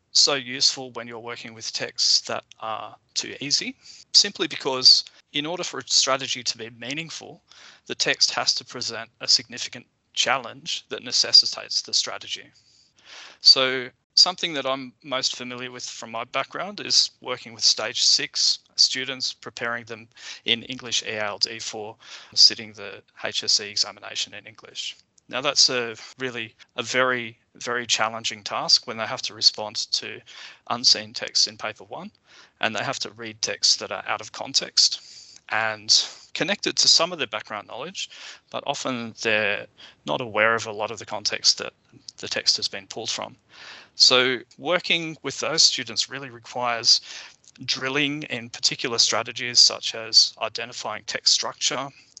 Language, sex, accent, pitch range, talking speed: English, male, Australian, 115-135 Hz, 155 wpm